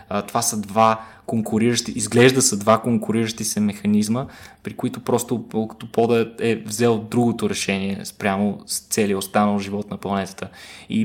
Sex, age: male, 20-39